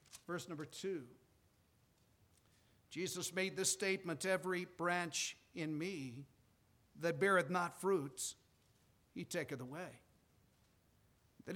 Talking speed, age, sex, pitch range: 100 wpm, 50-69, male, 185-225 Hz